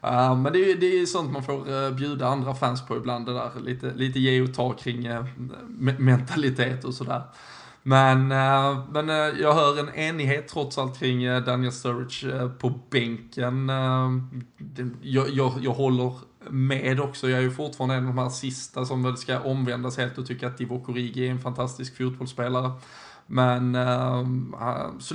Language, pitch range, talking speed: Swedish, 125-135 Hz, 185 wpm